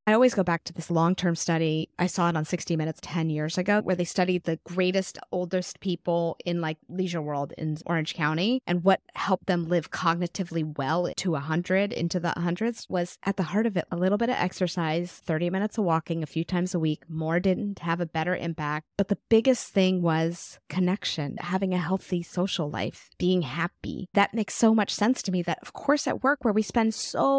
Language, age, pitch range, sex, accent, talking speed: English, 20-39, 165-195 Hz, female, American, 215 wpm